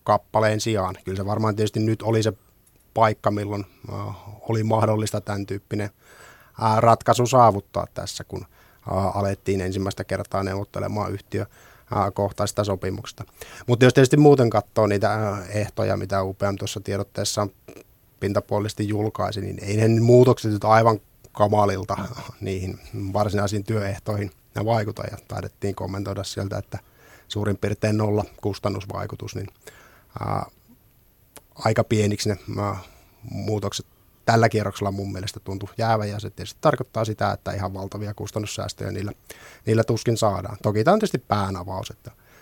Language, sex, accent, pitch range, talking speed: Finnish, male, native, 100-115 Hz, 130 wpm